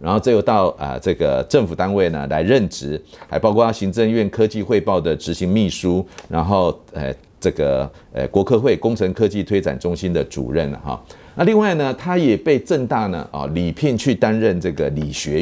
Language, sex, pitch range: Chinese, male, 80-110 Hz